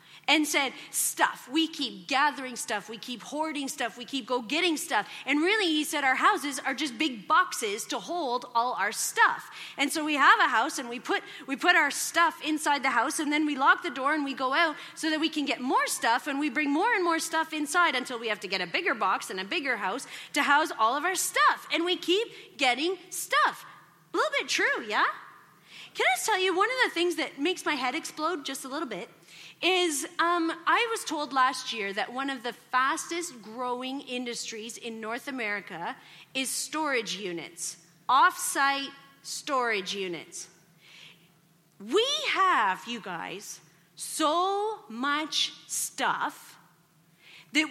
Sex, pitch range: female, 240-340 Hz